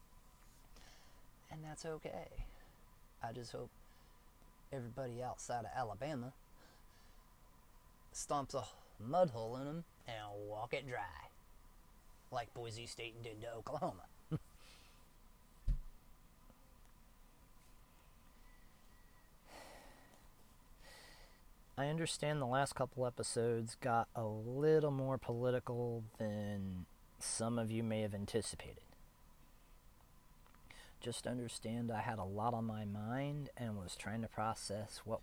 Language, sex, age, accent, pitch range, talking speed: English, male, 30-49, American, 105-125 Hz, 100 wpm